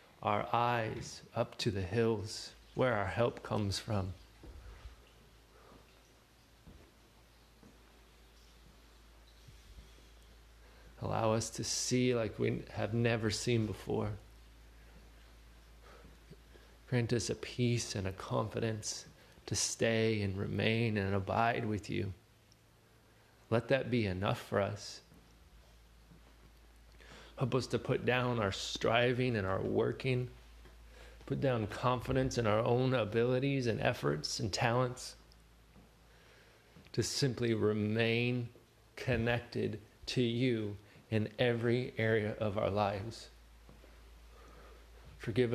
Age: 30-49